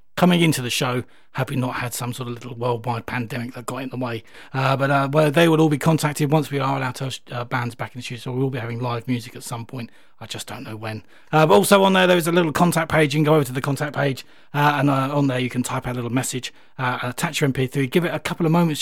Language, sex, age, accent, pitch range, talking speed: English, male, 30-49, British, 130-170 Hz, 300 wpm